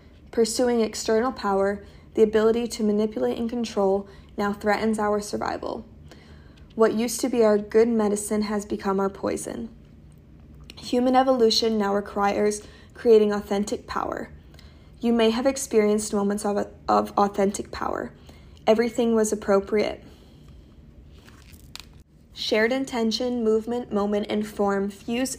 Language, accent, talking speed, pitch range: English, American, 120 wpm, 195-230 Hz